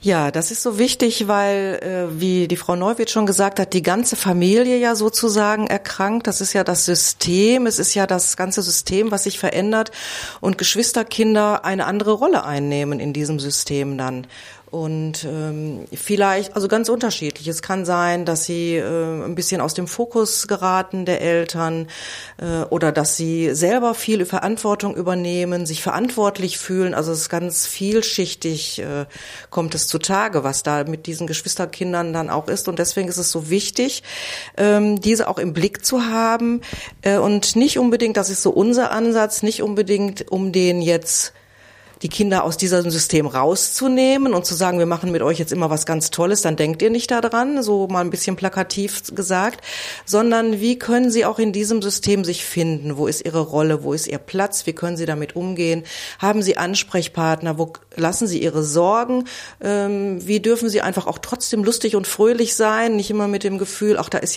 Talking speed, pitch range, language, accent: 185 wpm, 165-210 Hz, German, German